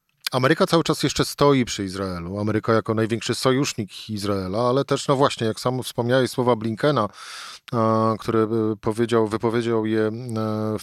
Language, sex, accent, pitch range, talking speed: Polish, male, native, 110-135 Hz, 145 wpm